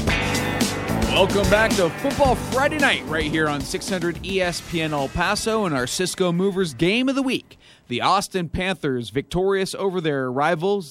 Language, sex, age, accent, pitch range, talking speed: English, male, 30-49, American, 130-185 Hz, 155 wpm